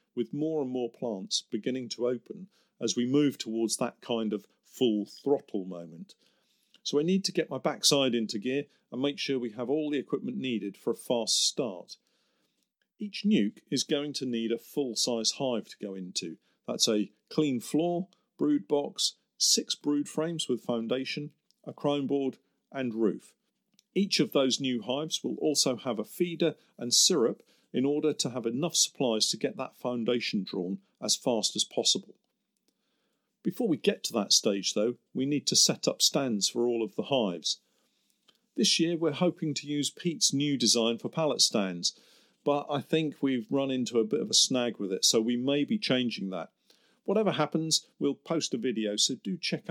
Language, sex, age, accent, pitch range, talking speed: English, male, 50-69, British, 115-155 Hz, 185 wpm